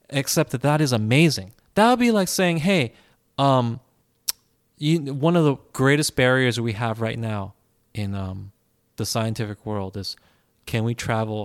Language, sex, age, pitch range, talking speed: English, male, 20-39, 110-145 Hz, 155 wpm